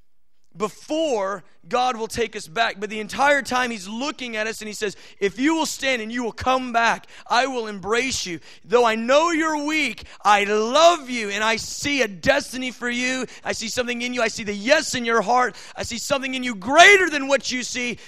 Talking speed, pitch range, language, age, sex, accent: 220 wpm, 170-245 Hz, English, 30-49, male, American